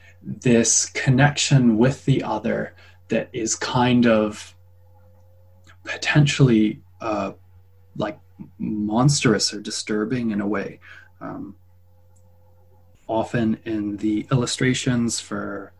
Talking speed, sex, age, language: 90 wpm, male, 20-39, English